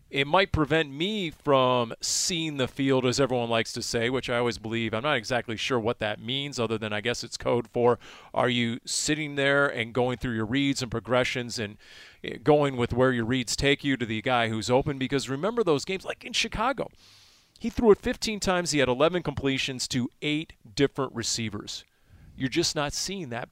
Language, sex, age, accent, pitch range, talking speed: English, male, 40-59, American, 115-140 Hz, 205 wpm